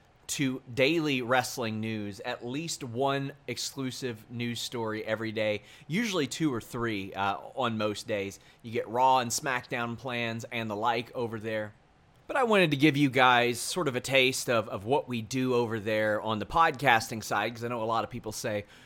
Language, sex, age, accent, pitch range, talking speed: English, male, 30-49, American, 110-135 Hz, 195 wpm